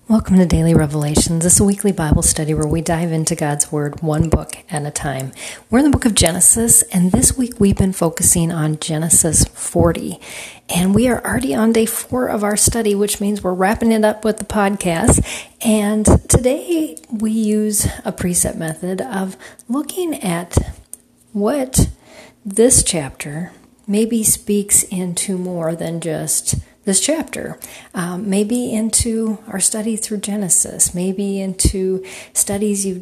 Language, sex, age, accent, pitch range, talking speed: English, female, 40-59, American, 170-220 Hz, 155 wpm